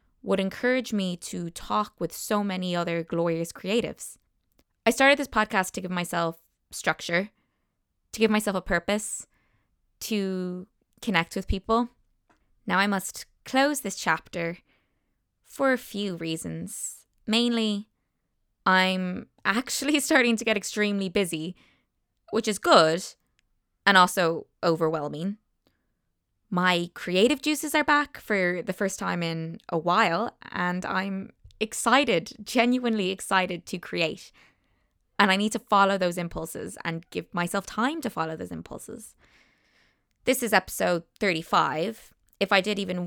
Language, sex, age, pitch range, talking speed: English, female, 20-39, 175-225 Hz, 130 wpm